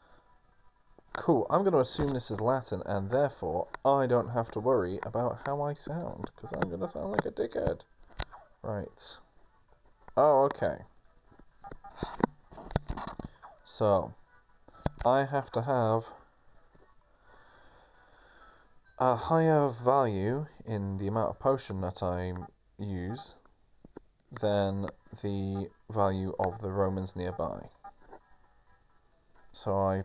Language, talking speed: English, 110 wpm